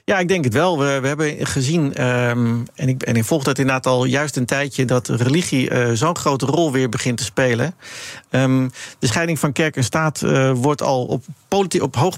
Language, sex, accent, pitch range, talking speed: Dutch, male, Dutch, 125-155 Hz, 215 wpm